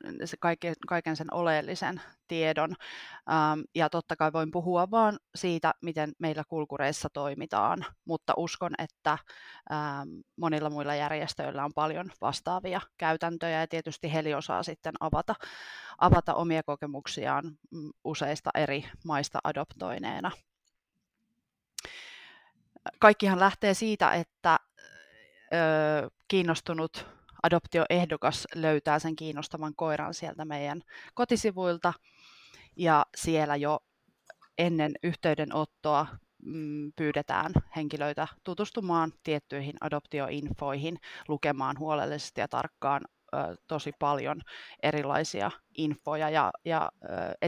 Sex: female